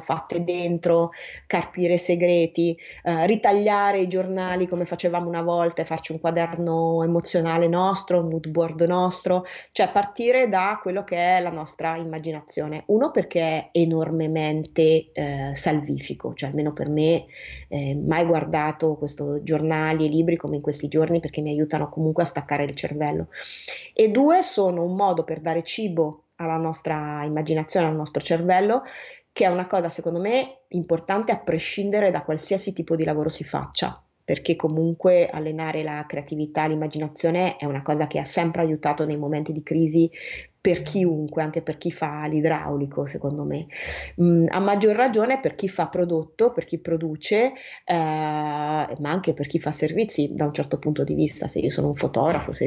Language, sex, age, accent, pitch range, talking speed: Italian, female, 30-49, native, 155-180 Hz, 165 wpm